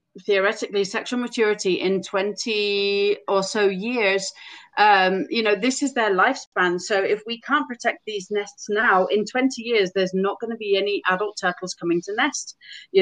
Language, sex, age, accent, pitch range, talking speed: English, female, 30-49, British, 185-220 Hz, 175 wpm